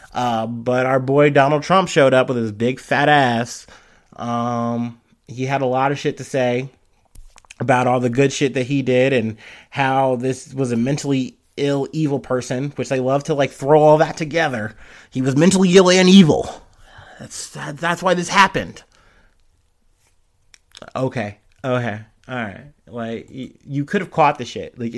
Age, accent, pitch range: 30-49, American, 110-140 Hz